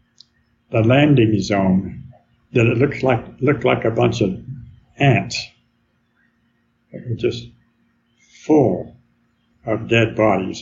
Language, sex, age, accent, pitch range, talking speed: English, male, 60-79, American, 110-130 Hz, 115 wpm